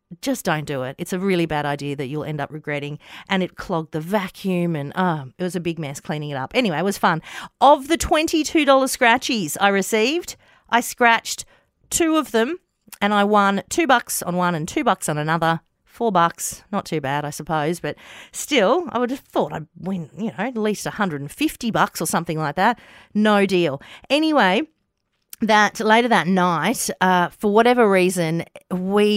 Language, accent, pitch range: English, Australian, 160-215 Hz